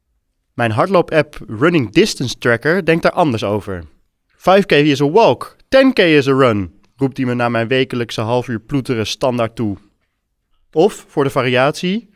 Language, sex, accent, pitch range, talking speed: English, male, Dutch, 115-170 Hz, 160 wpm